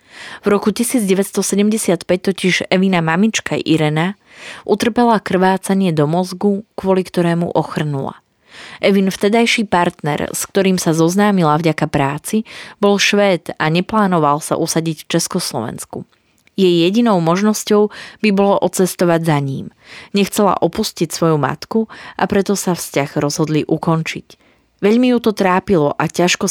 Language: Slovak